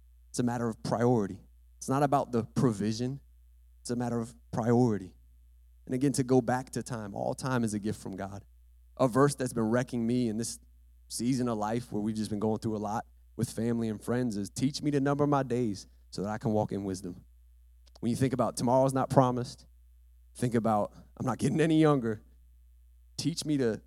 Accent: American